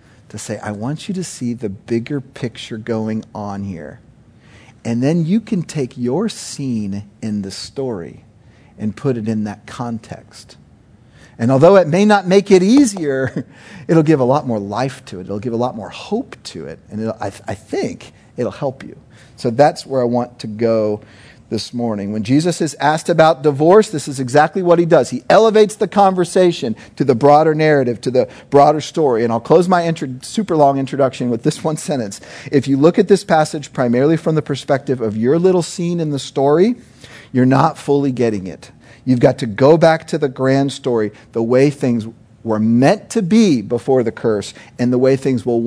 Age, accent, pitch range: 40-59, American, 110-155 Hz